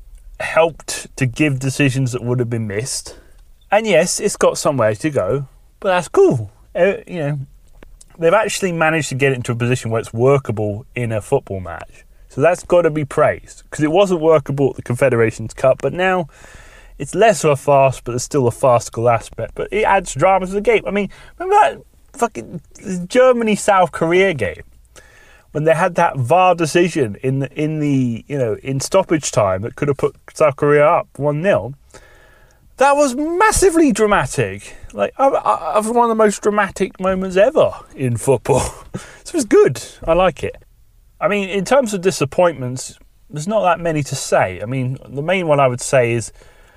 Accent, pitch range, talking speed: British, 125-185 Hz, 195 wpm